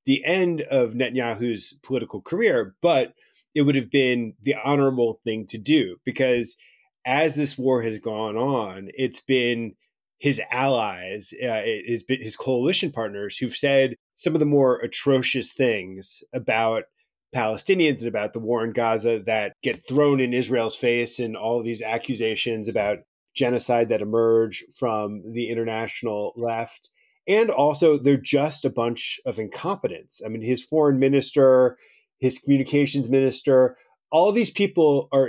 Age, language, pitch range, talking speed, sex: 30-49, English, 115-140 Hz, 145 wpm, male